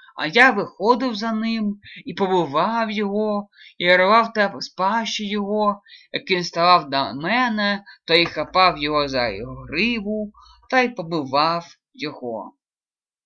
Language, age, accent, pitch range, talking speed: Russian, 20-39, native, 170-230 Hz, 125 wpm